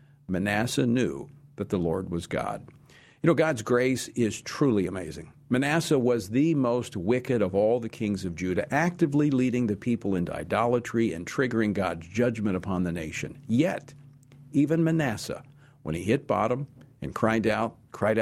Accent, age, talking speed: American, 50-69, 160 wpm